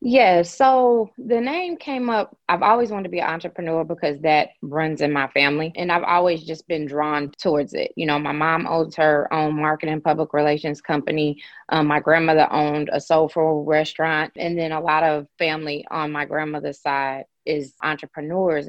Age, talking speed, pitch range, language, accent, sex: 20-39, 185 wpm, 150-170 Hz, English, American, female